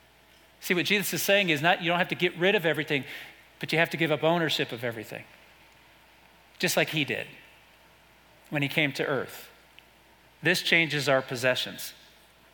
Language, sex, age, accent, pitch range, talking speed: English, male, 40-59, American, 145-175 Hz, 175 wpm